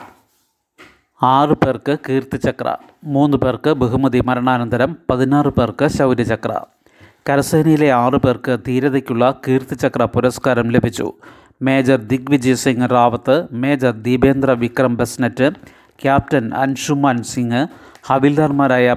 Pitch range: 125-140 Hz